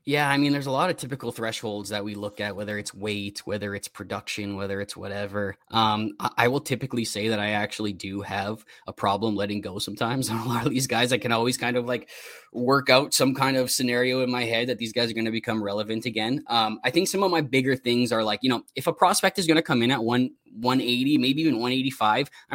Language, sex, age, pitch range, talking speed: English, male, 20-39, 105-135 Hz, 250 wpm